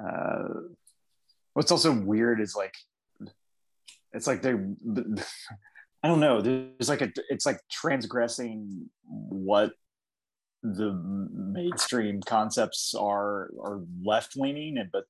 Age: 30-49